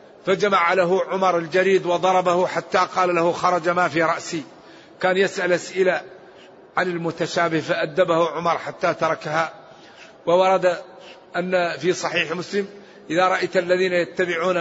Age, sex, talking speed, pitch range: 50-69, male, 125 wpm, 175-200 Hz